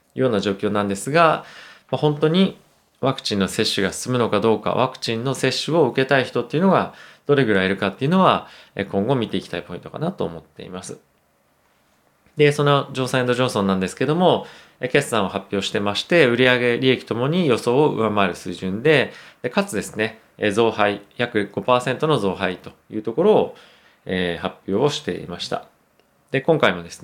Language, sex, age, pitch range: Japanese, male, 20-39, 100-135 Hz